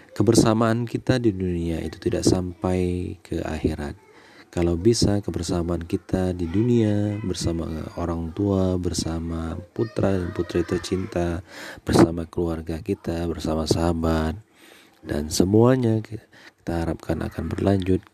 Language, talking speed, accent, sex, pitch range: Indonesian, 115 wpm, native, male, 80-105 Hz